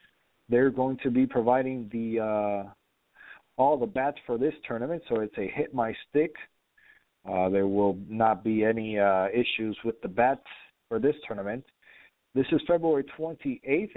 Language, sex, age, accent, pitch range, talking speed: English, male, 40-59, American, 115-150 Hz, 150 wpm